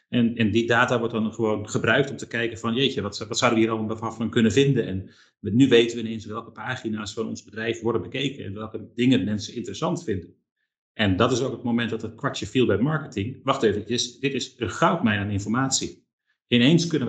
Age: 40-59